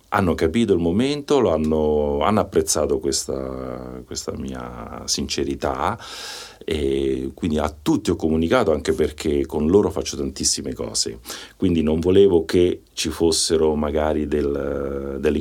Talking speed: 125 wpm